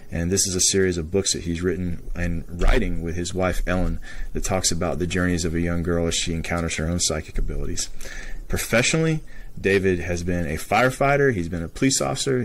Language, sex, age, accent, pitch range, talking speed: English, male, 30-49, American, 85-110 Hz, 205 wpm